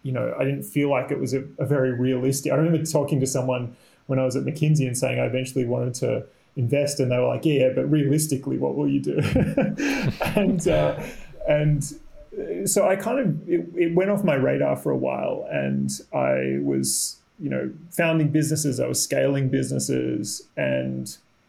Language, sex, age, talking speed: English, male, 30-49, 195 wpm